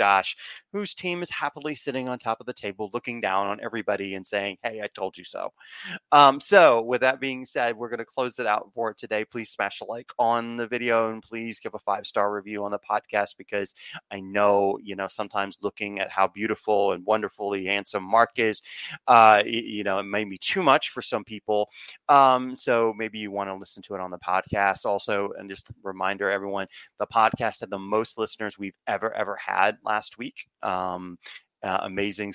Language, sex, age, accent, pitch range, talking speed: English, male, 30-49, American, 100-120 Hz, 210 wpm